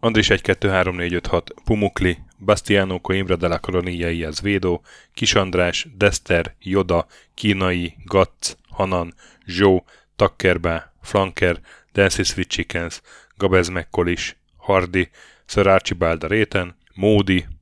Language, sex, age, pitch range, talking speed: Hungarian, male, 10-29, 90-105 Hz, 110 wpm